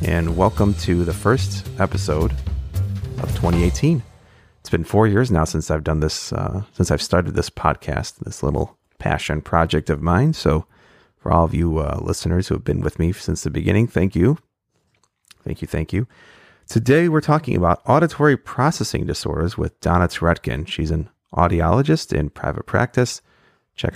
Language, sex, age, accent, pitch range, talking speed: English, male, 30-49, American, 85-110 Hz, 170 wpm